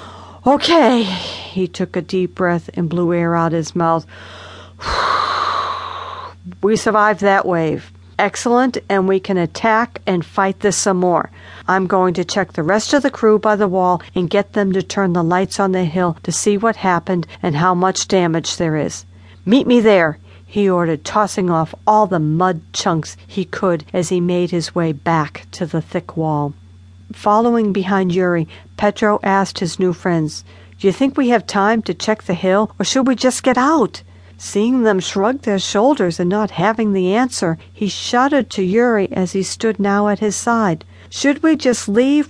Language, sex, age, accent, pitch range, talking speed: English, female, 50-69, American, 175-235 Hz, 185 wpm